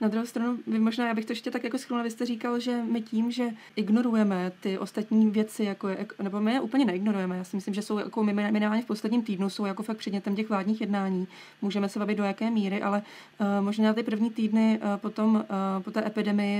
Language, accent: Czech, native